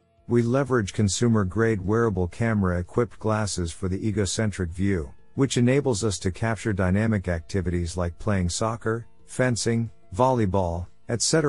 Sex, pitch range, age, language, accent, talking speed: male, 90-115 Hz, 50-69, English, American, 120 wpm